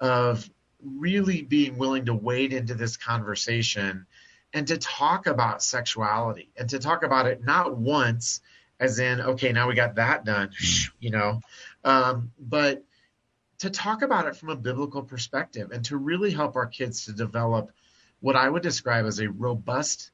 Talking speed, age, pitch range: 165 wpm, 30-49, 115-145 Hz